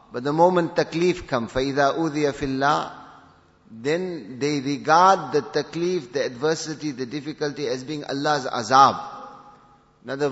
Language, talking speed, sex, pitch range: English, 135 wpm, male, 130-155 Hz